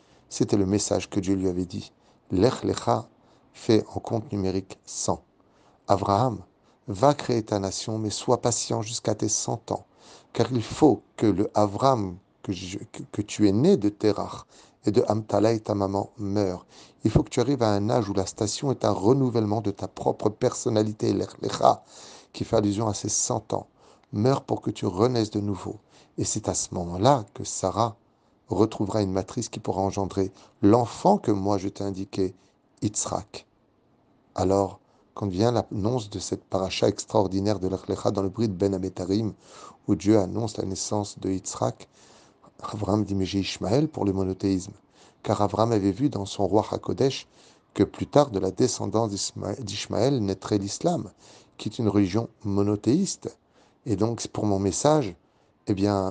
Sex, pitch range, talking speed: male, 100-115 Hz, 170 wpm